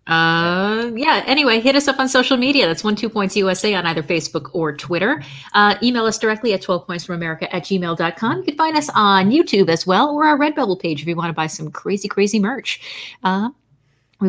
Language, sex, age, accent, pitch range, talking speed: English, female, 30-49, American, 165-225 Hz, 215 wpm